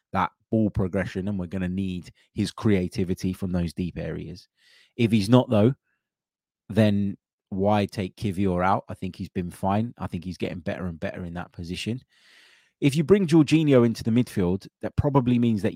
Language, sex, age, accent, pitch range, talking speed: English, male, 20-39, British, 95-115 Hz, 185 wpm